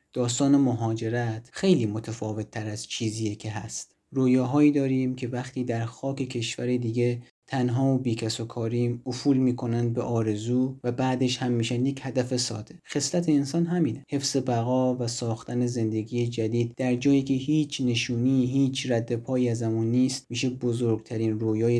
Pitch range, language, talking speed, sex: 115-130 Hz, Persian, 145 wpm, male